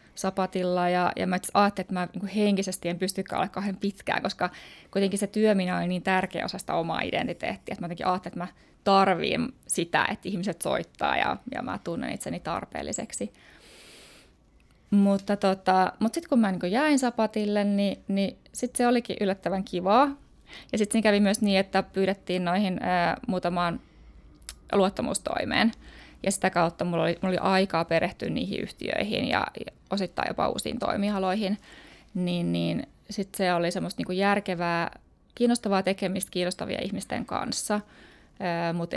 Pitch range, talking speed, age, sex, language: 185-225 Hz, 155 wpm, 20-39, female, Finnish